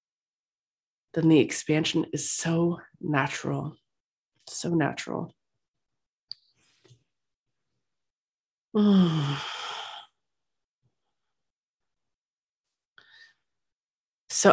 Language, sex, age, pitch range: English, female, 20-39, 145-180 Hz